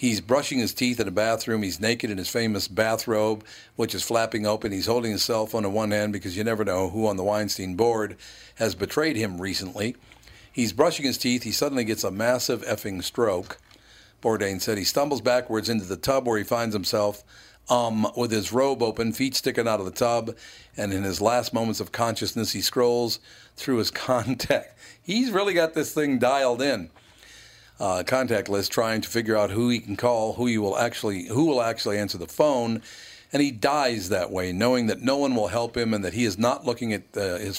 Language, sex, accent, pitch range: English, male, American, 100-120 Hz